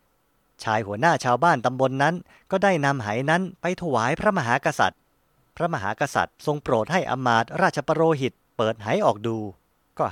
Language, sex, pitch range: Thai, male, 120-165 Hz